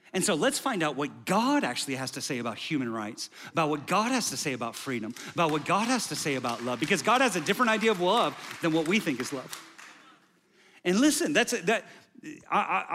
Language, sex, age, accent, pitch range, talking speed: English, male, 40-59, American, 135-180 Hz, 235 wpm